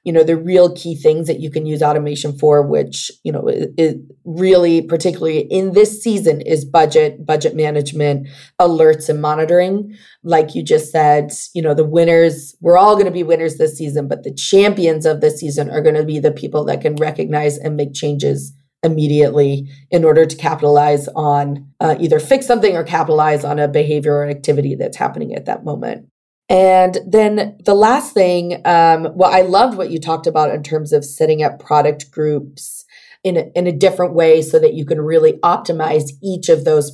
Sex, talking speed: female, 195 wpm